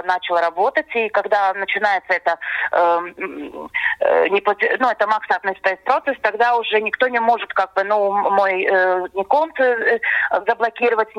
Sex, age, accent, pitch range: female, 20-39, native, 190-235 Hz